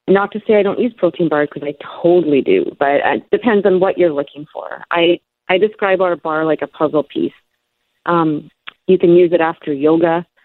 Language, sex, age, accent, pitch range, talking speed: English, female, 40-59, American, 145-180 Hz, 205 wpm